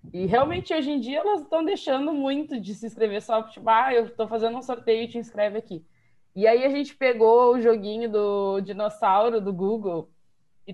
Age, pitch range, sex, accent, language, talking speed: 20-39, 205-255 Hz, female, Brazilian, Portuguese, 195 wpm